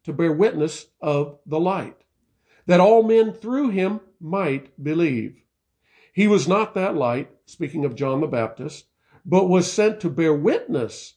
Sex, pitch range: male, 140-195 Hz